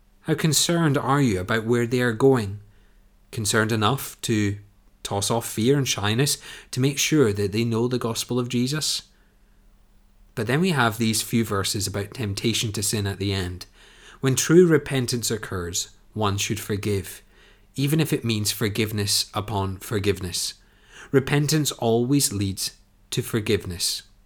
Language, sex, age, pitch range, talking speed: English, male, 30-49, 100-125 Hz, 150 wpm